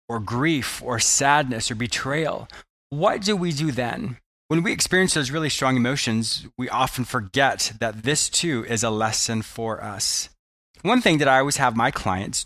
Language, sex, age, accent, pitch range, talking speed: English, male, 20-39, American, 115-155 Hz, 180 wpm